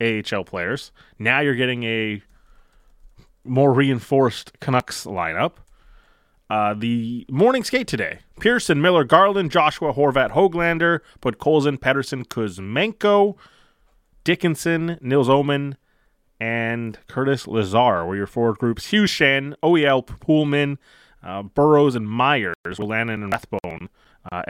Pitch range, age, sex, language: 105-150 Hz, 30-49, male, English